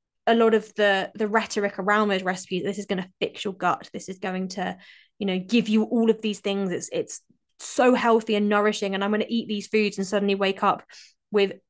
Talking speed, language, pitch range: 230 wpm, English, 205-245 Hz